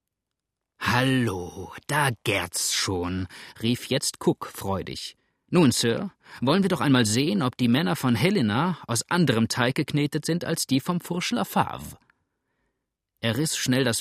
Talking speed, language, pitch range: 150 wpm, German, 110-145 Hz